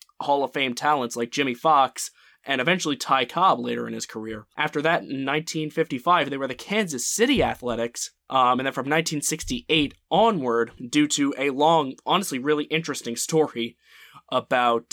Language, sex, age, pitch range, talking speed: English, male, 20-39, 125-175 Hz, 160 wpm